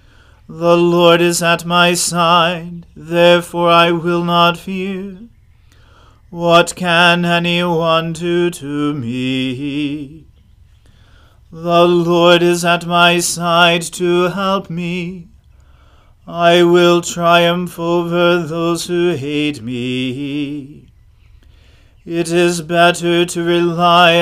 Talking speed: 95 wpm